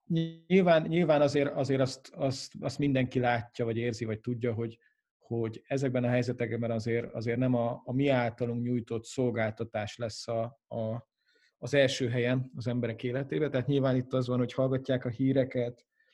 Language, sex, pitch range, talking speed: Hungarian, male, 120-135 Hz, 155 wpm